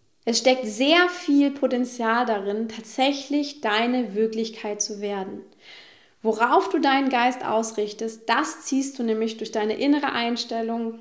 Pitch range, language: 220-270 Hz, German